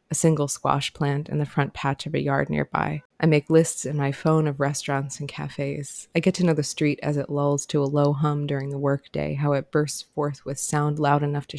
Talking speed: 245 wpm